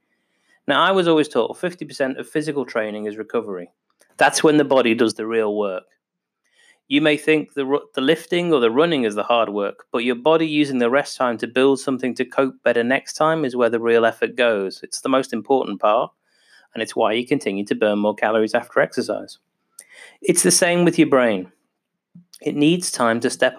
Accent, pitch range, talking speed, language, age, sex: British, 120-160 Hz, 205 wpm, English, 30-49, male